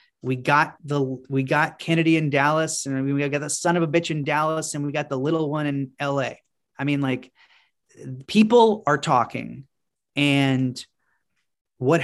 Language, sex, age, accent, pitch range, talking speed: English, male, 30-49, American, 140-170 Hz, 170 wpm